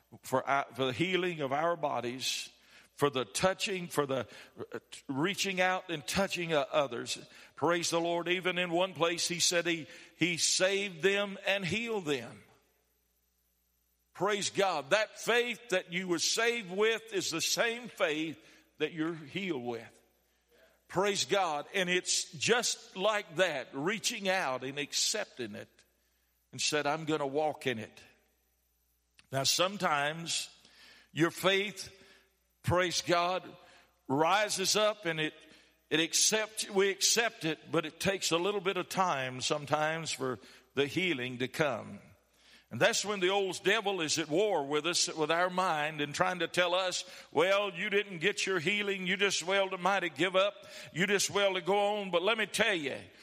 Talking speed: 160 wpm